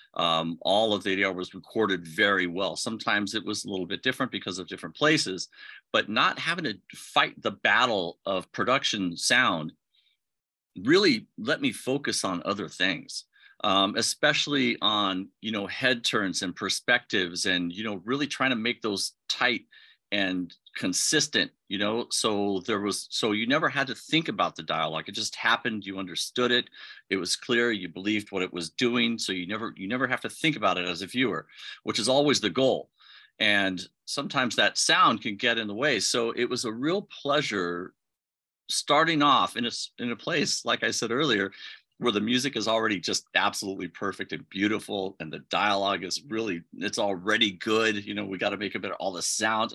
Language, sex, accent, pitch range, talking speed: English, male, American, 95-115 Hz, 195 wpm